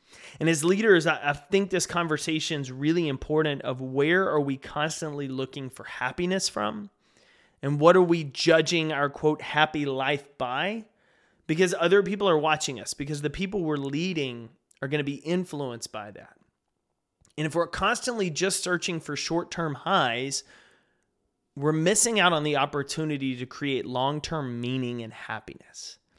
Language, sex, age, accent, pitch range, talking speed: English, male, 30-49, American, 140-180 Hz, 155 wpm